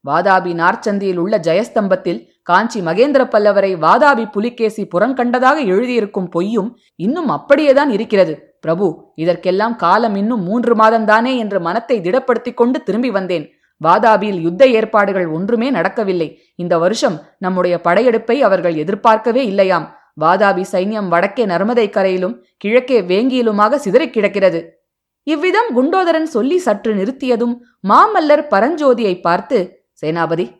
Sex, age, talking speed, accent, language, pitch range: female, 20-39, 110 wpm, native, Tamil, 180-245 Hz